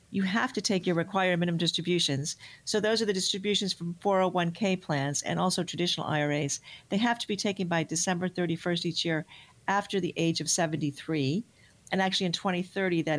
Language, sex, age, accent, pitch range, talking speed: English, female, 50-69, American, 165-195 Hz, 175 wpm